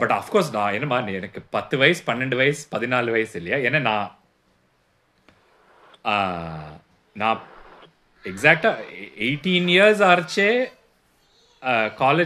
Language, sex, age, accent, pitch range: English, male, 30-49, Indian, 135-225 Hz